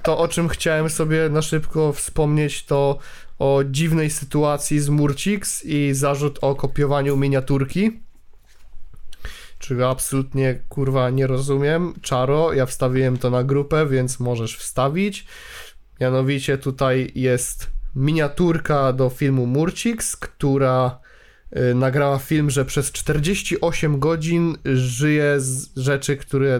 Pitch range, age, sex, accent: 130-160 Hz, 20-39, male, native